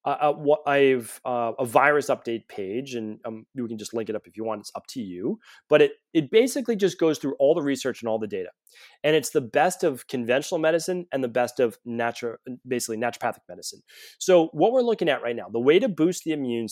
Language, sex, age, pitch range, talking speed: English, male, 30-49, 115-150 Hz, 235 wpm